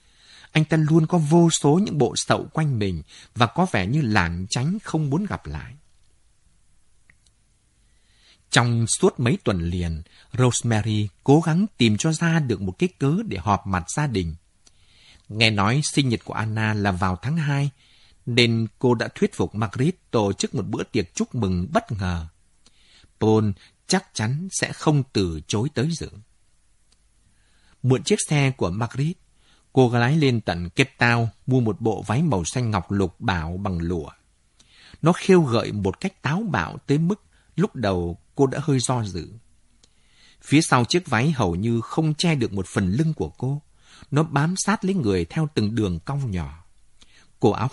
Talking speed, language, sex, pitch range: 175 wpm, Vietnamese, male, 95-145 Hz